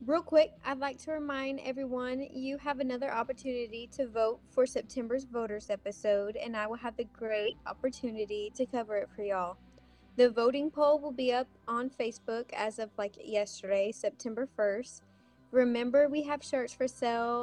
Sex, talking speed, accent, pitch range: female, 170 wpm, American, 210-255 Hz